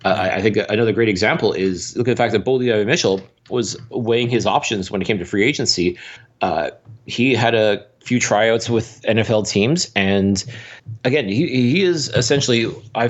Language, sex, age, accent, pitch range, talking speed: English, male, 30-49, American, 100-125 Hz, 185 wpm